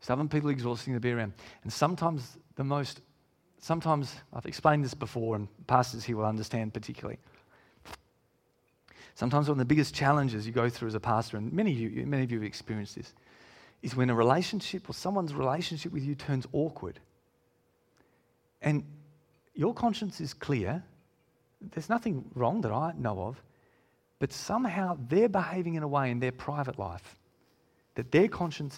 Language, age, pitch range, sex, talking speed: English, 40-59, 120-165 Hz, male, 170 wpm